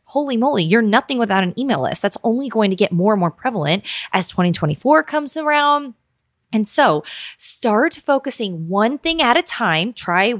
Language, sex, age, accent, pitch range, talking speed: English, female, 20-39, American, 185-265 Hz, 180 wpm